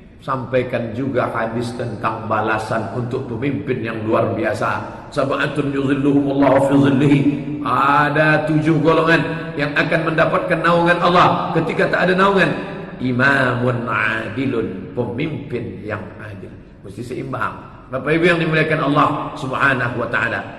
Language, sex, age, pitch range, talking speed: Indonesian, male, 40-59, 120-170 Hz, 110 wpm